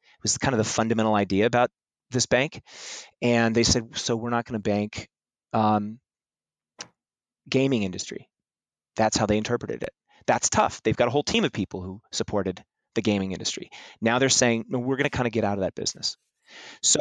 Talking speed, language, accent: 195 wpm, English, American